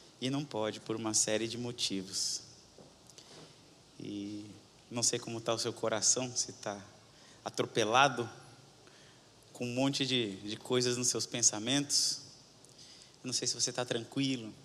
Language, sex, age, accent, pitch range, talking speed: Portuguese, male, 20-39, Brazilian, 110-140 Hz, 140 wpm